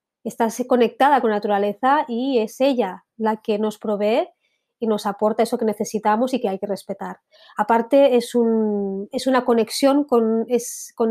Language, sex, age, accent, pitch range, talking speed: Spanish, female, 20-39, Spanish, 210-245 Hz, 160 wpm